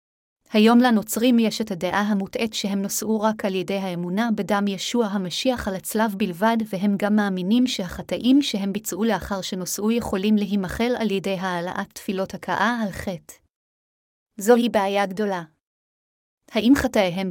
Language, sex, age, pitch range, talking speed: Hebrew, female, 30-49, 195-230 Hz, 140 wpm